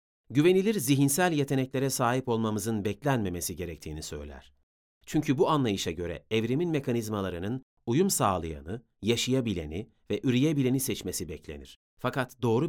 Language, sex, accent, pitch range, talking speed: Turkish, male, native, 105-155 Hz, 110 wpm